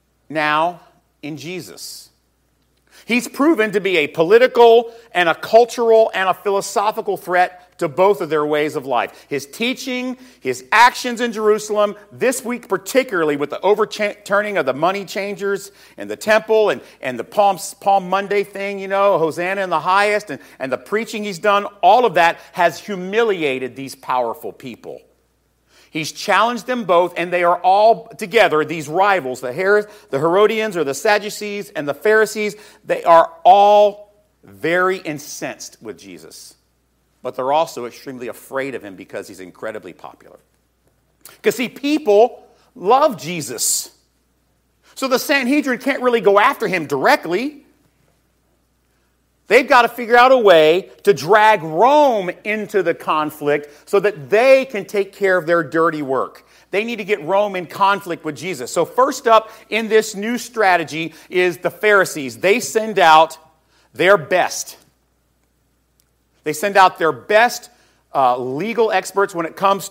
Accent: American